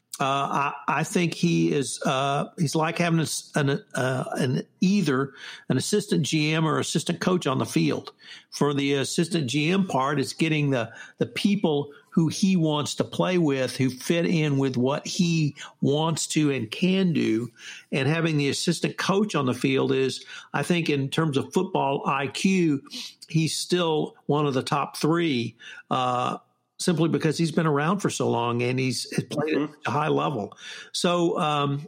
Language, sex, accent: English, male, American